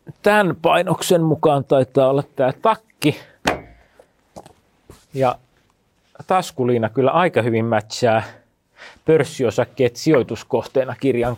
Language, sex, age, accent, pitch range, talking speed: Finnish, male, 30-49, native, 110-140 Hz, 85 wpm